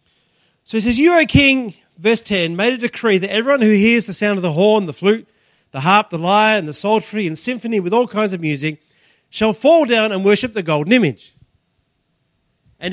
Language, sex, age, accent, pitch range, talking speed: English, male, 30-49, Australian, 170-240 Hz, 210 wpm